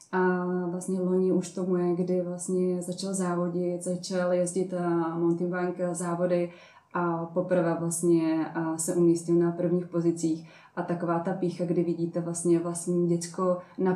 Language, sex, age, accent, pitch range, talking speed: Czech, female, 20-39, native, 170-185 Hz, 145 wpm